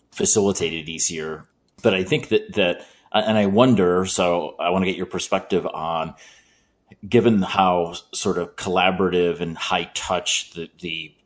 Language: English